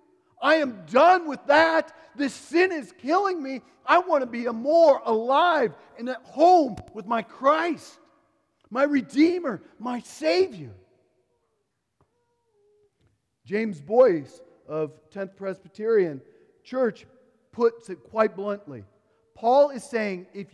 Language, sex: English, male